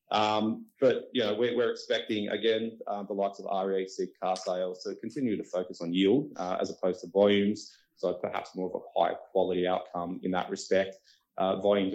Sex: male